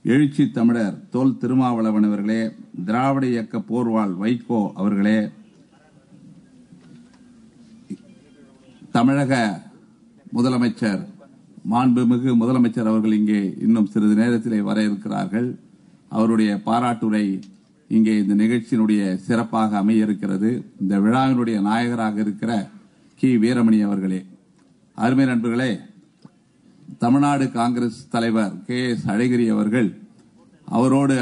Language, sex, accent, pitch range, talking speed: Tamil, male, native, 105-125 Hz, 85 wpm